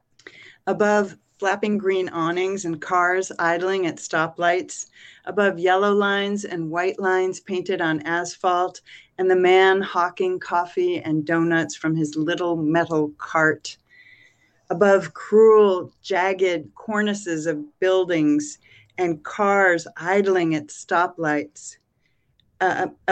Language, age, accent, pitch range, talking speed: English, 40-59, American, 165-195 Hz, 110 wpm